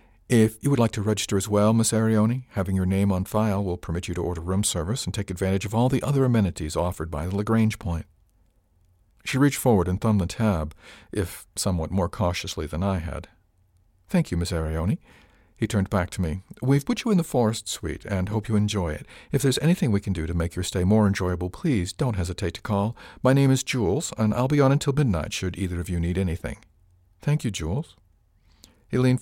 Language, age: English, 50-69